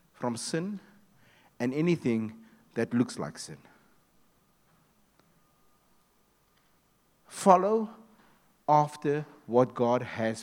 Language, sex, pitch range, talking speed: English, male, 125-175 Hz, 75 wpm